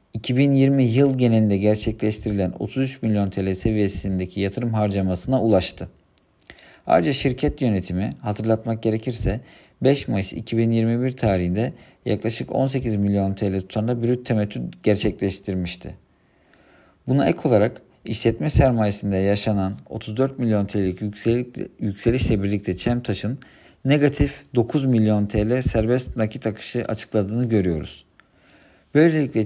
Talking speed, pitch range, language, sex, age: 100 wpm, 100-125 Hz, Turkish, male, 50-69